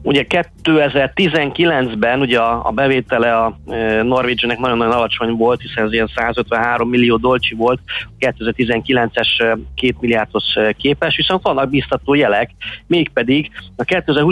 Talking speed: 115 wpm